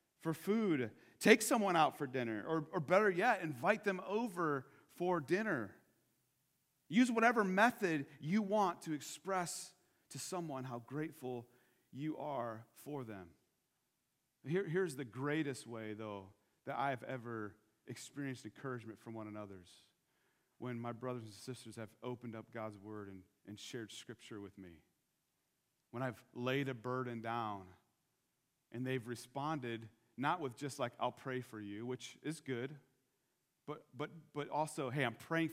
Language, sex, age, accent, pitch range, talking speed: English, male, 40-59, American, 120-175 Hz, 150 wpm